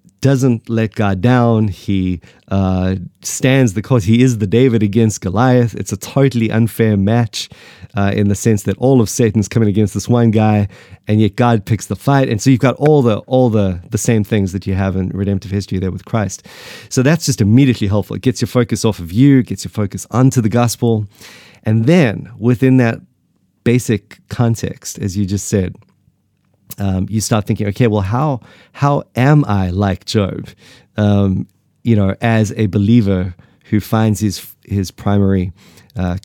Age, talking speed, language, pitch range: 30-49, 180 wpm, English, 100-120 Hz